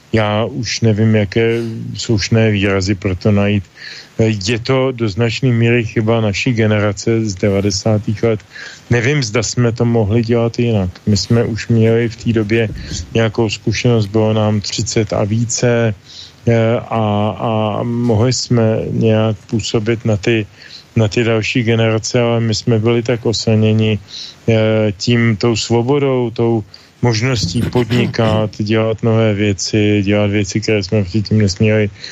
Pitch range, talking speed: 105-120 Hz, 135 wpm